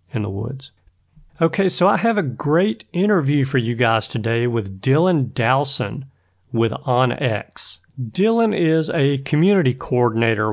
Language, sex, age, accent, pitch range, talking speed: English, male, 40-59, American, 115-145 Hz, 135 wpm